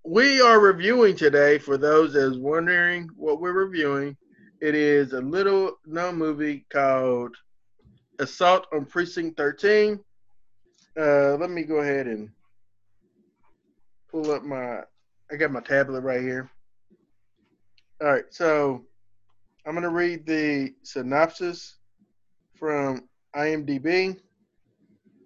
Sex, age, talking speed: male, 20-39, 115 wpm